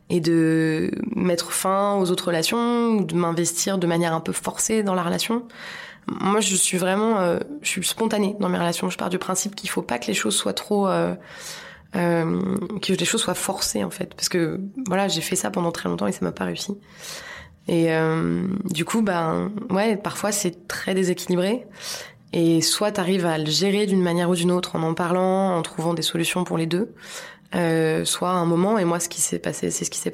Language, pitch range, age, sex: French, 170-200 Hz, 20-39, female